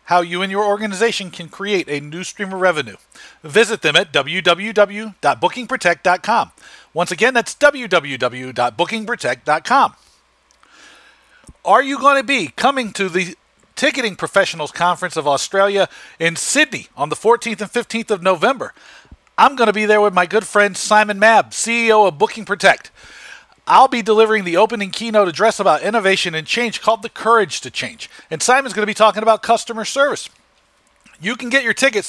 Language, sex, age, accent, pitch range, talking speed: English, male, 40-59, American, 180-235 Hz, 165 wpm